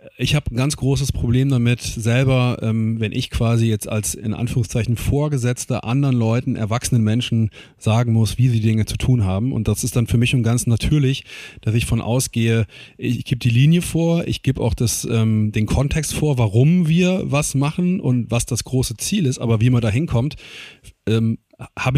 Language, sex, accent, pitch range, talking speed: German, male, German, 115-130 Hz, 190 wpm